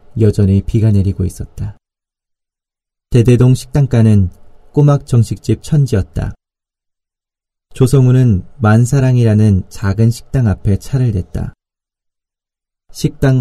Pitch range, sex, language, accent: 100-125 Hz, male, Korean, native